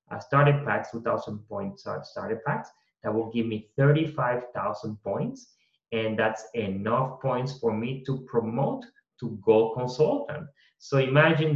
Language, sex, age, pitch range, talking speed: English, male, 30-49, 110-145 Hz, 135 wpm